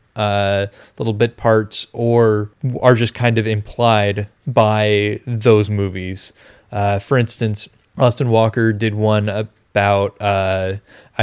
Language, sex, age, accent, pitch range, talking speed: English, male, 20-39, American, 105-120 Hz, 120 wpm